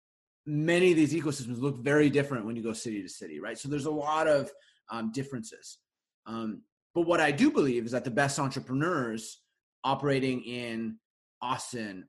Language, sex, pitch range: English, male, 115-150 Hz